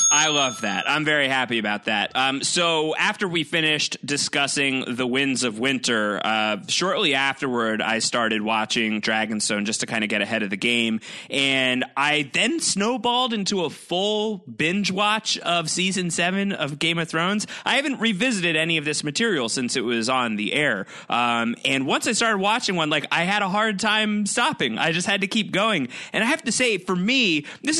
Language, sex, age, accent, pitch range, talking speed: English, male, 30-49, American, 120-190 Hz, 195 wpm